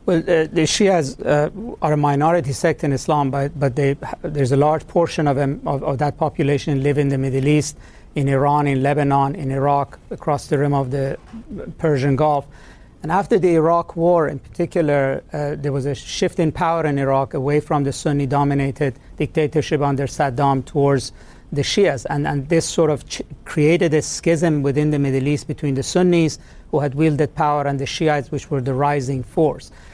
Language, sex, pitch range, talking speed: English, male, 140-165 Hz, 185 wpm